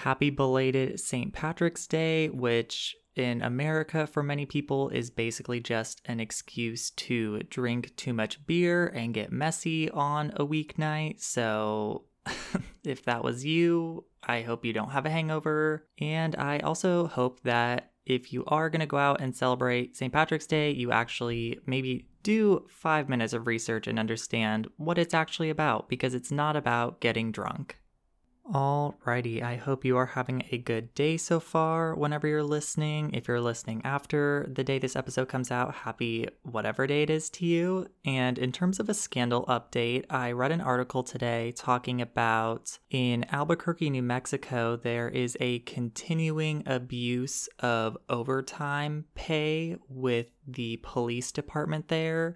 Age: 20-39